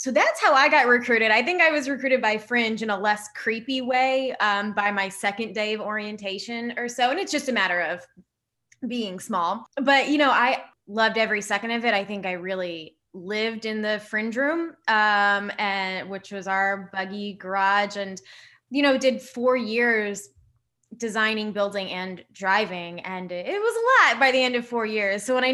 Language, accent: English, American